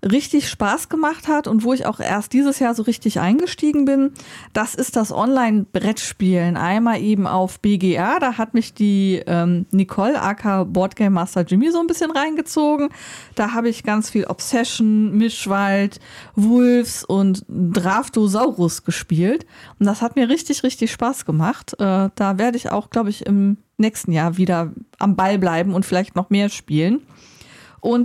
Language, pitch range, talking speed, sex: German, 195-245 Hz, 165 wpm, female